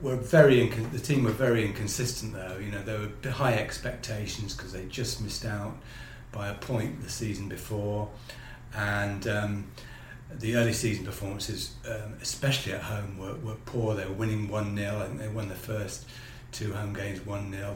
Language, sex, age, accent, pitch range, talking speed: English, male, 40-59, British, 105-130 Hz, 180 wpm